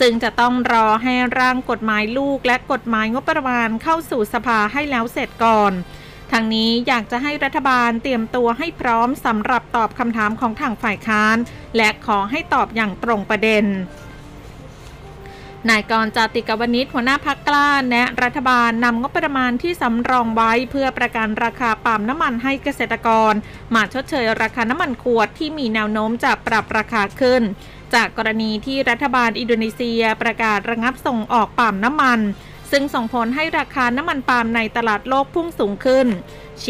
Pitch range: 220-260 Hz